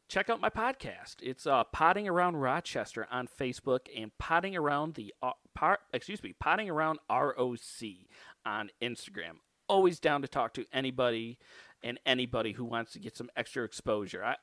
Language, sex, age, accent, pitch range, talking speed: English, male, 40-59, American, 125-160 Hz, 160 wpm